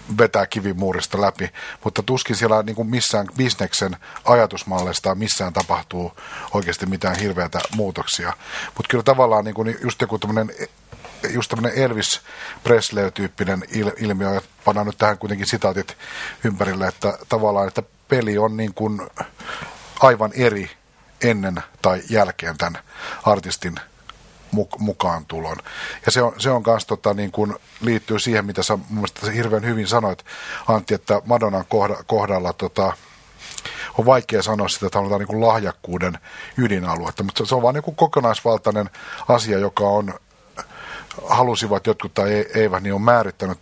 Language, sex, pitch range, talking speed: Finnish, male, 100-120 Hz, 130 wpm